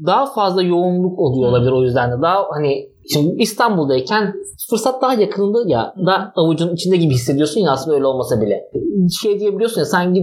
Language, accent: Turkish, native